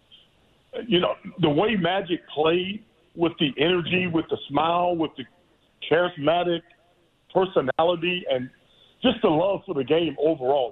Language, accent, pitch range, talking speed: English, American, 145-180 Hz, 135 wpm